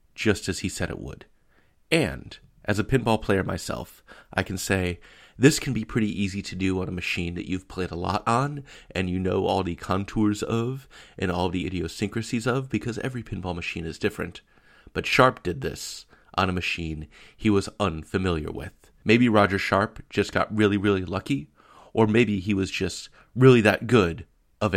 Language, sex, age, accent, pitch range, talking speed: English, male, 30-49, American, 90-110 Hz, 185 wpm